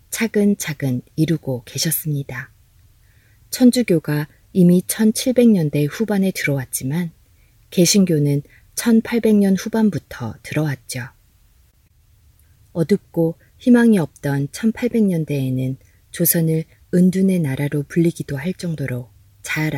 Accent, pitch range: native, 125-175 Hz